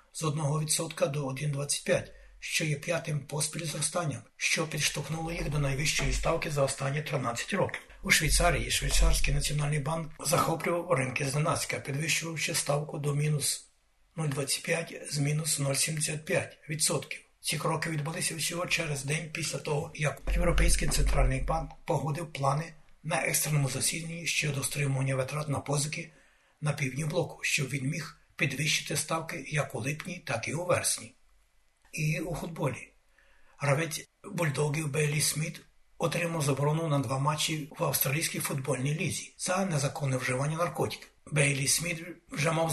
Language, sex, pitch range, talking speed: Ukrainian, male, 140-165 Hz, 140 wpm